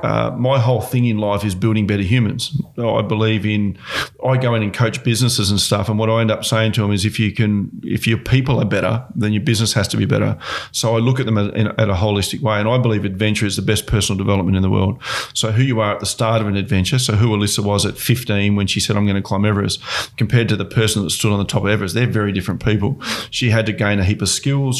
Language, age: English, 40-59